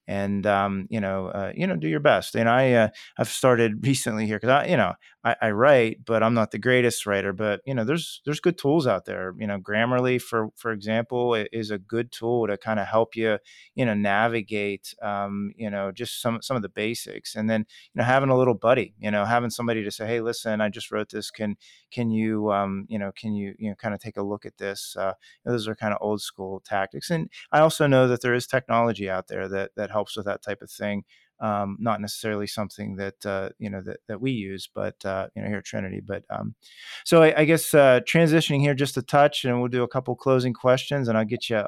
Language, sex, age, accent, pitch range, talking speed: English, male, 30-49, American, 105-125 Hz, 235 wpm